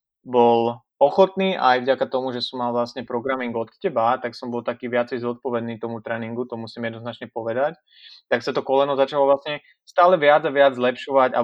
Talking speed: 190 wpm